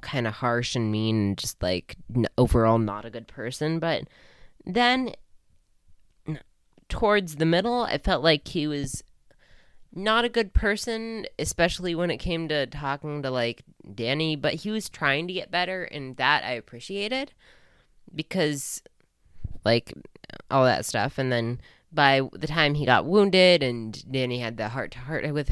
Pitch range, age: 110-170 Hz, 10-29